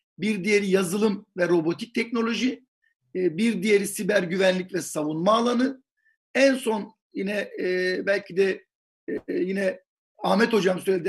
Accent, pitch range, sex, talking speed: native, 195-260 Hz, male, 120 wpm